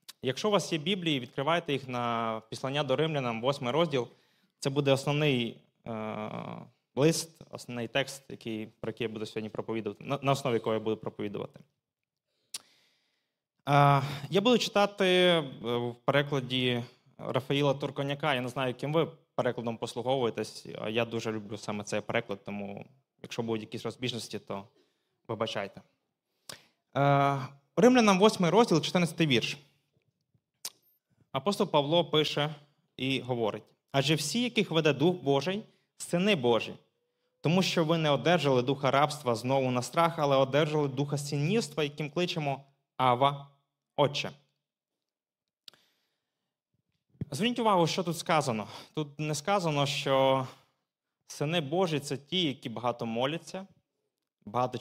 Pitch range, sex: 120-165 Hz, male